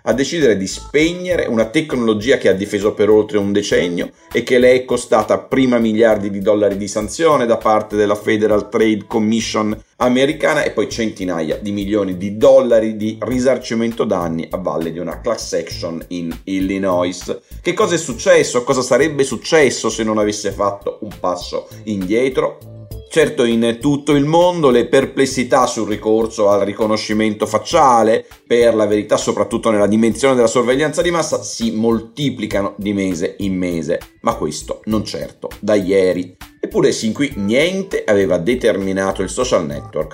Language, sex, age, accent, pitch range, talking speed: Italian, male, 40-59, native, 100-125 Hz, 160 wpm